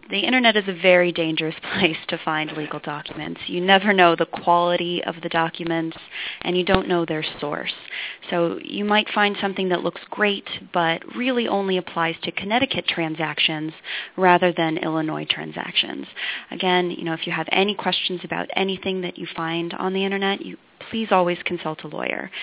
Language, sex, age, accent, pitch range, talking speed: English, female, 30-49, American, 165-190 Hz, 175 wpm